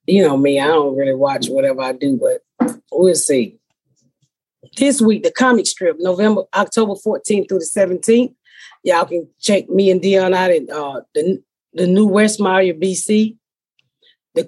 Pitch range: 180-240 Hz